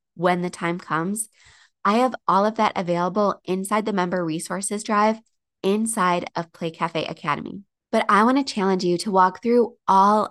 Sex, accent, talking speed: female, American, 175 wpm